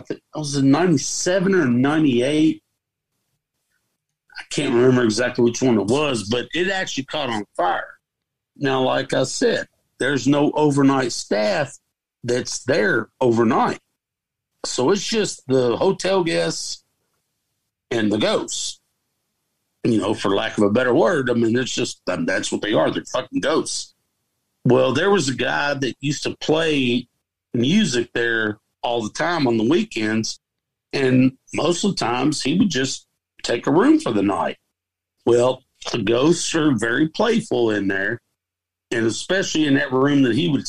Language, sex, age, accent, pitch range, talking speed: English, male, 50-69, American, 120-160 Hz, 160 wpm